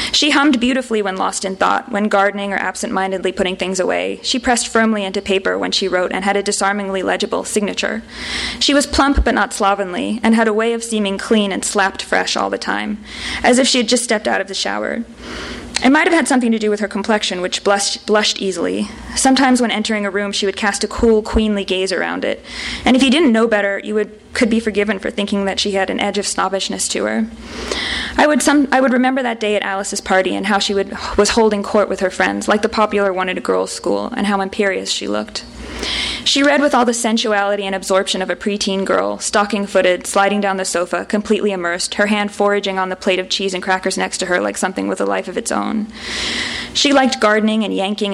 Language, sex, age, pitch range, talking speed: English, female, 20-39, 195-230 Hz, 225 wpm